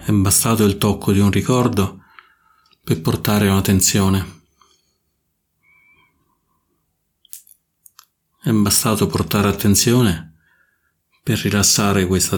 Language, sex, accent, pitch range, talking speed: Italian, male, native, 90-105 Hz, 85 wpm